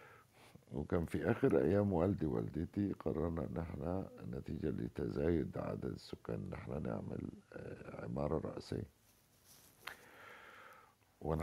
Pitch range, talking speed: 80-100 Hz, 100 wpm